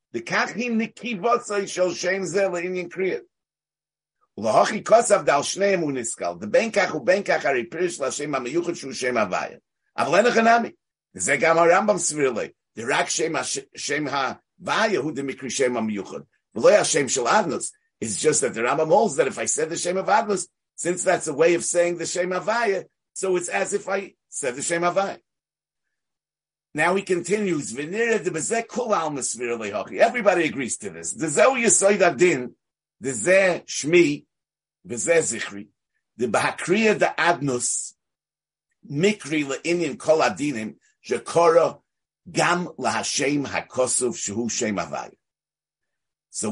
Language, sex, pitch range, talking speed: English, male, 140-200 Hz, 55 wpm